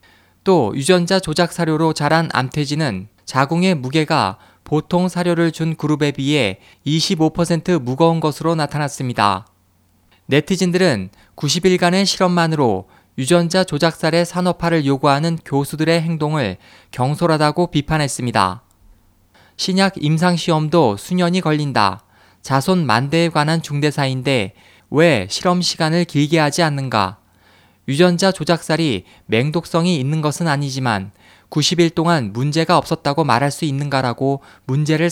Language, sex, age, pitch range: Korean, male, 20-39, 120-170 Hz